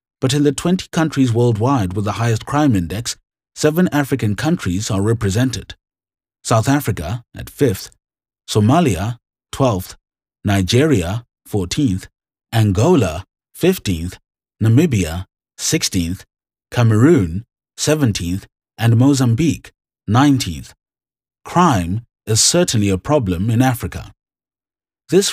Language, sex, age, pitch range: English, male, 30-49, 95-135 Hz